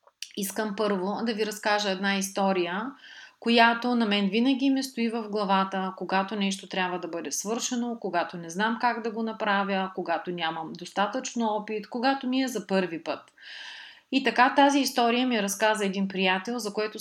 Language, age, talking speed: Bulgarian, 30-49, 170 wpm